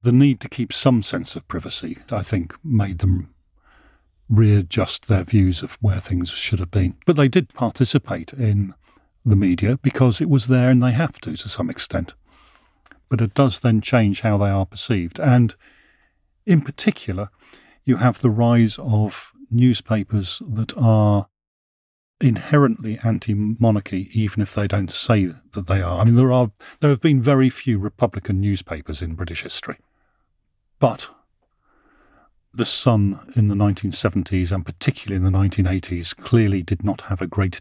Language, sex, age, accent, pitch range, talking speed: English, male, 50-69, British, 95-120 Hz, 160 wpm